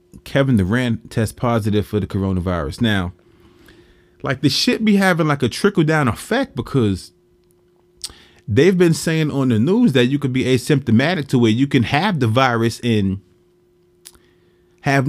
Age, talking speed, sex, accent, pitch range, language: 30-49, 155 wpm, male, American, 110-160 Hz, English